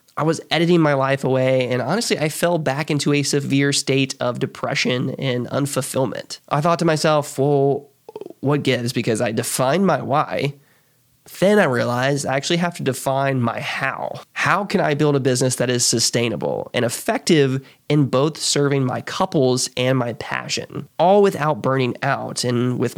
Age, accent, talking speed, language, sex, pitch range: 20-39, American, 170 wpm, English, male, 125-160 Hz